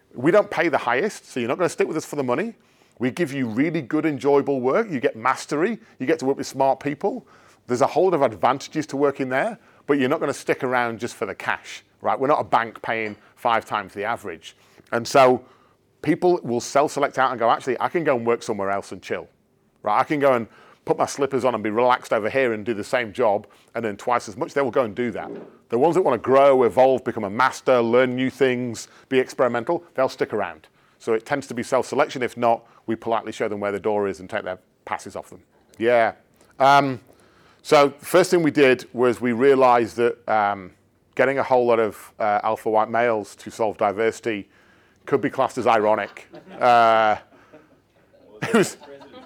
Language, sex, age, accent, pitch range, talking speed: English, male, 40-59, British, 115-140 Hz, 225 wpm